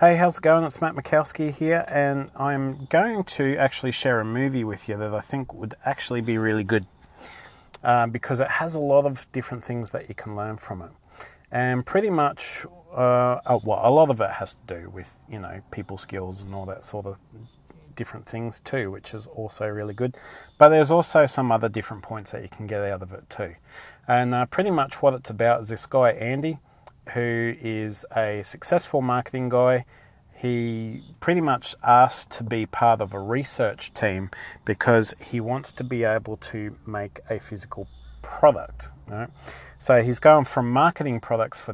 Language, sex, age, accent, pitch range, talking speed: English, male, 30-49, Australian, 105-135 Hz, 190 wpm